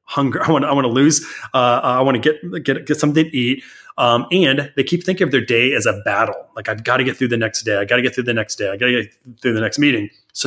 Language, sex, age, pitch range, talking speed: English, male, 30-49, 120-155 Hz, 310 wpm